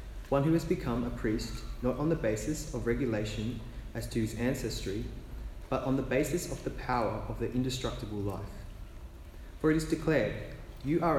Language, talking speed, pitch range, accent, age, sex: English, 175 wpm, 100-130 Hz, Australian, 20-39, male